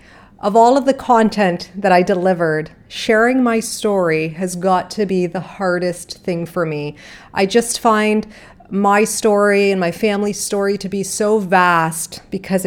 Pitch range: 175-205 Hz